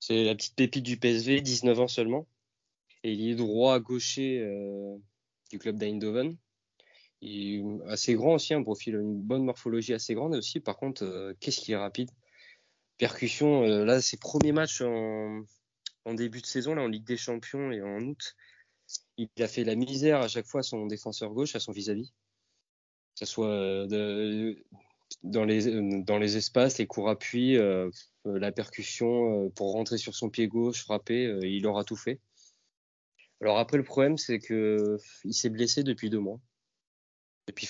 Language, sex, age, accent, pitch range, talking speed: French, male, 20-39, French, 105-125 Hz, 185 wpm